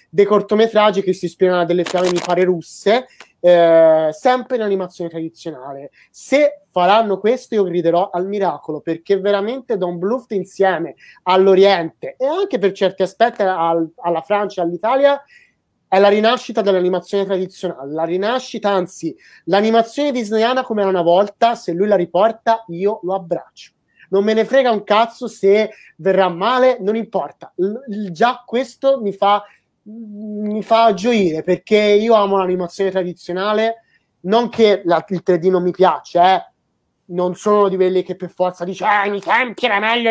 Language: Italian